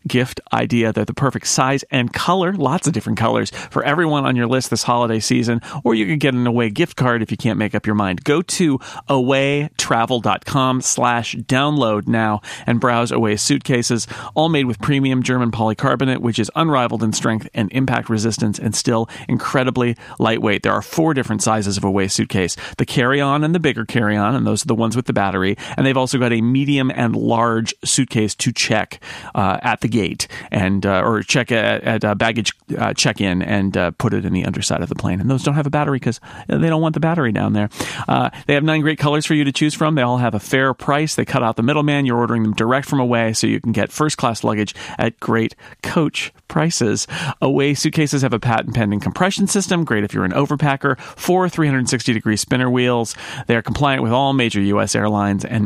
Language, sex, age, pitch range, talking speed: English, male, 40-59, 110-140 Hz, 210 wpm